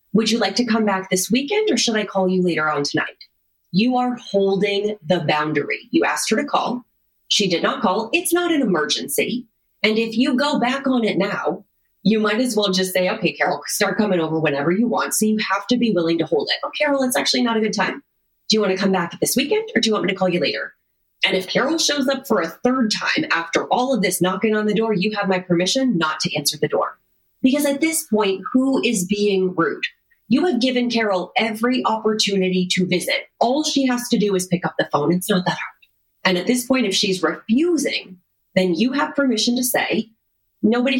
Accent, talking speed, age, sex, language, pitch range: American, 235 wpm, 30-49, female, English, 185-245 Hz